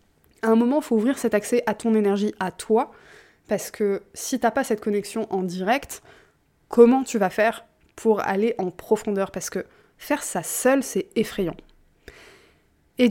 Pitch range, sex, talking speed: 205-240 Hz, female, 175 wpm